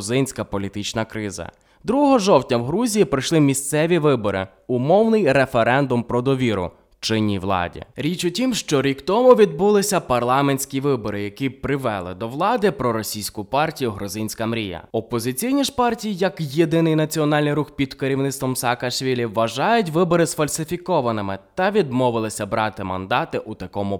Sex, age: male, 20-39